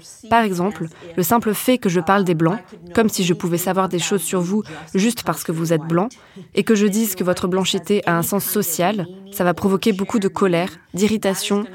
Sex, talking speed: female, 220 wpm